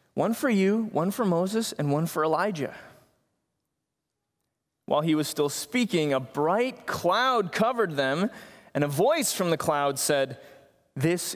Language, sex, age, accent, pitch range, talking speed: English, male, 30-49, American, 135-175 Hz, 150 wpm